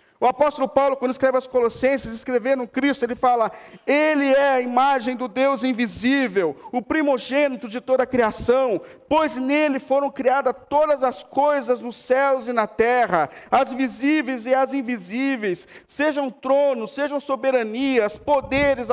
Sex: male